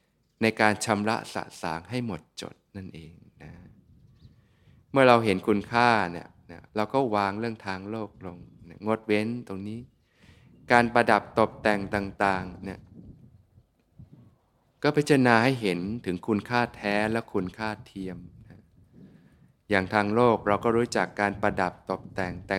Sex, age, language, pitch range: male, 20-39, Thai, 95-115 Hz